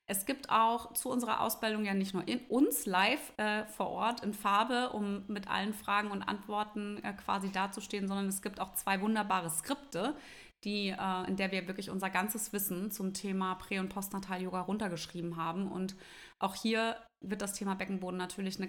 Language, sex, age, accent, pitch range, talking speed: German, female, 20-39, German, 185-220 Hz, 185 wpm